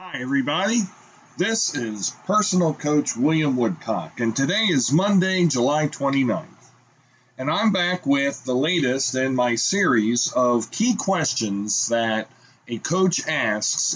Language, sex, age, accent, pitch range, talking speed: English, male, 40-59, American, 120-160 Hz, 130 wpm